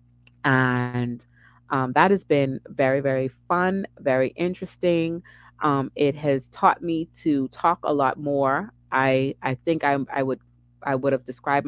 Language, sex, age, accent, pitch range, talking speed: English, female, 30-49, American, 120-145 Hz, 155 wpm